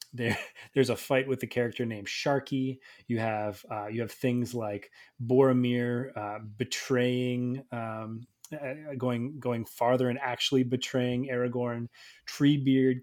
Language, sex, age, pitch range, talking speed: English, male, 30-49, 110-130 Hz, 130 wpm